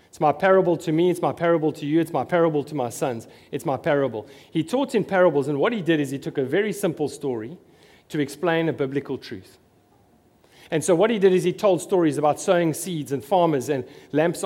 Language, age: English, 40-59